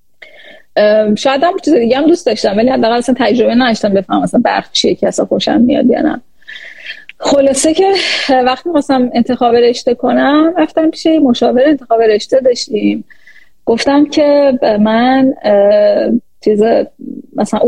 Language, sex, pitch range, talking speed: Persian, female, 225-285 Hz, 130 wpm